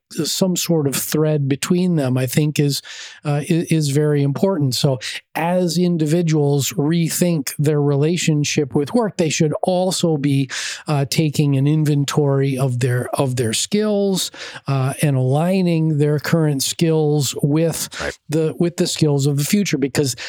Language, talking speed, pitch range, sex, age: English, 150 wpm, 145-165 Hz, male, 40-59